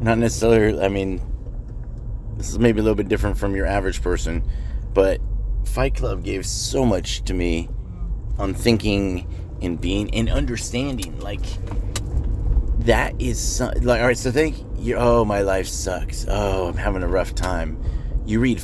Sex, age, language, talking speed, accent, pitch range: male, 30-49, English, 155 wpm, American, 95-120 Hz